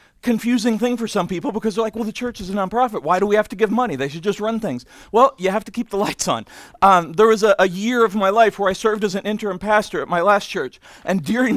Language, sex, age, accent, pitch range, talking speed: English, male, 40-59, American, 195-235 Hz, 290 wpm